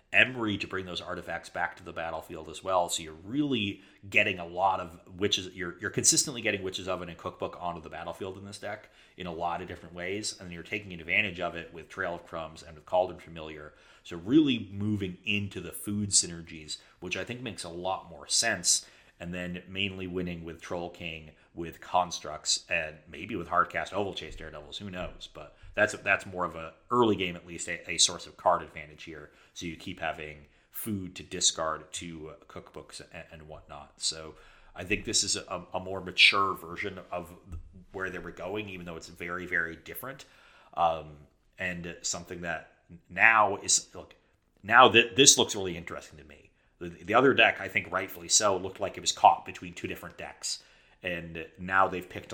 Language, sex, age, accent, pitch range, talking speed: English, male, 30-49, American, 85-95 Hz, 200 wpm